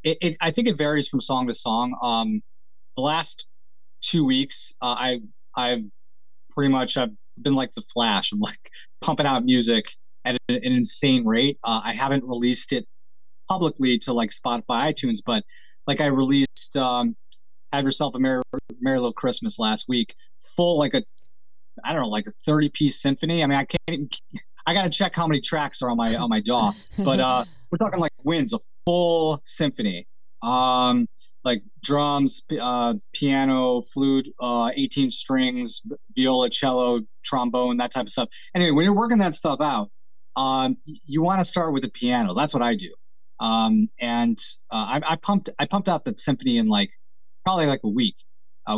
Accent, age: American, 20-39